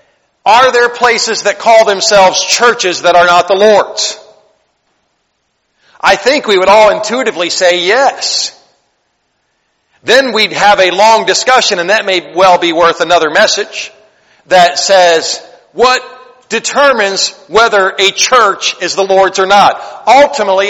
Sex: male